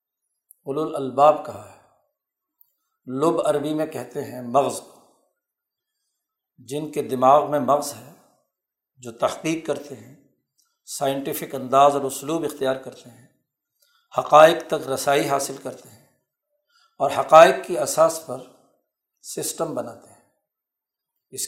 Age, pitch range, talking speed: 60-79, 135-165 Hz, 115 wpm